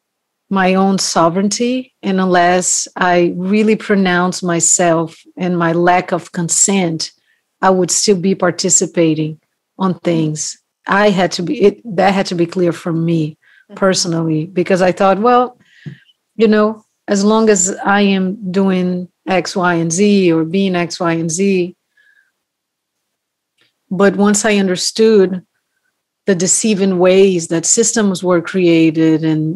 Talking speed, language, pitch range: 140 wpm, English, 170-200 Hz